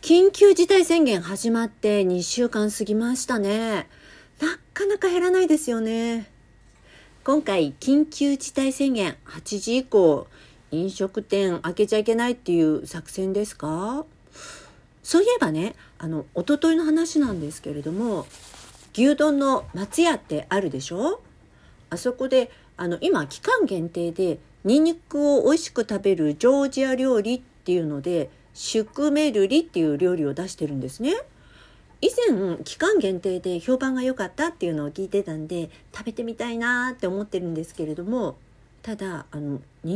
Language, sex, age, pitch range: Japanese, female, 50-69, 170-275 Hz